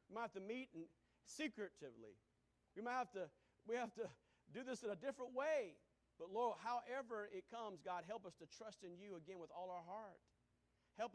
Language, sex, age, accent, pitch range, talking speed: English, male, 40-59, American, 140-175 Hz, 205 wpm